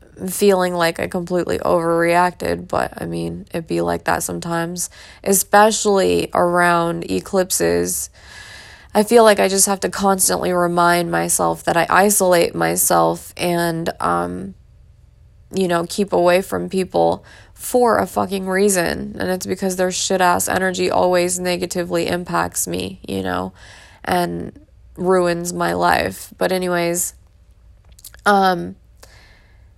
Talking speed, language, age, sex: 125 wpm, English, 20-39, female